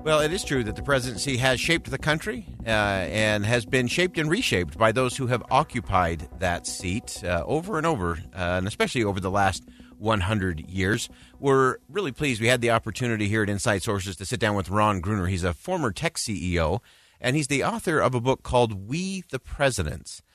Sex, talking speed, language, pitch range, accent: male, 205 wpm, English, 95-130 Hz, American